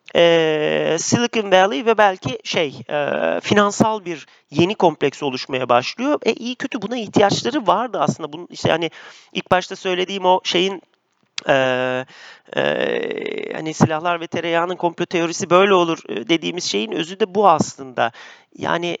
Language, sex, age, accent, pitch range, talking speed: Turkish, male, 40-59, native, 160-205 Hz, 145 wpm